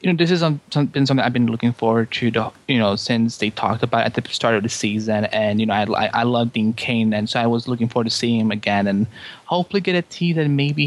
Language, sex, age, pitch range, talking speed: English, male, 20-39, 110-155 Hz, 280 wpm